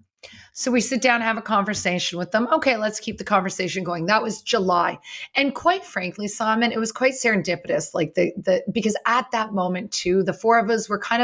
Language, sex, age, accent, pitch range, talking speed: English, female, 30-49, American, 185-245 Hz, 220 wpm